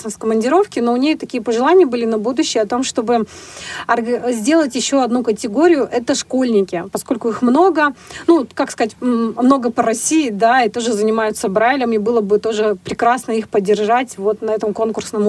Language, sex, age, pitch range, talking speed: Russian, female, 30-49, 220-270 Hz, 175 wpm